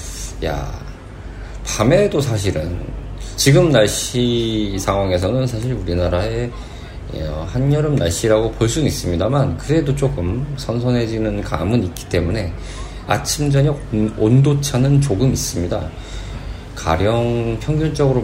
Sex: male